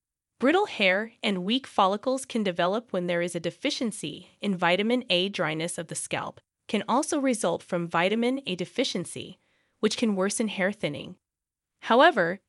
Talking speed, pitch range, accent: 155 wpm, 185-255 Hz, American